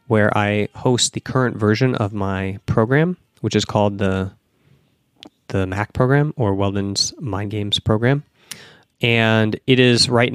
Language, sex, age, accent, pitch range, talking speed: English, male, 30-49, American, 105-125 Hz, 145 wpm